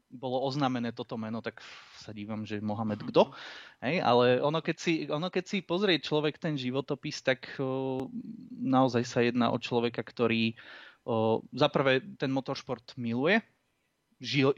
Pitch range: 115-140 Hz